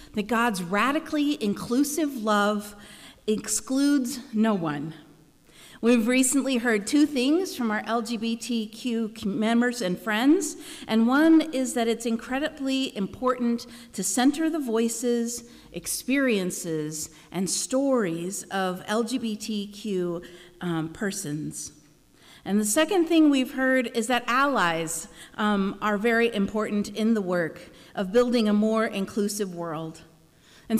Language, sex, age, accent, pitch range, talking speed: English, female, 50-69, American, 190-255 Hz, 115 wpm